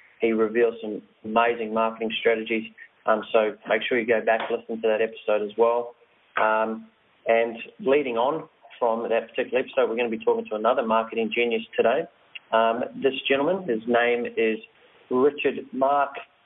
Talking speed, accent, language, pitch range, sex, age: 170 wpm, Australian, English, 110-125 Hz, male, 30-49